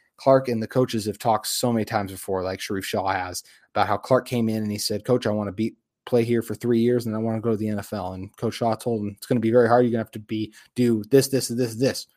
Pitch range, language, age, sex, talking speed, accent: 100-120 Hz, English, 20-39, male, 305 wpm, American